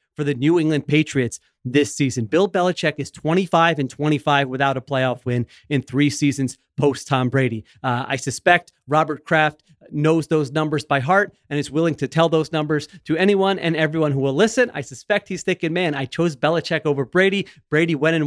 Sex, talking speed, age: male, 195 wpm, 30-49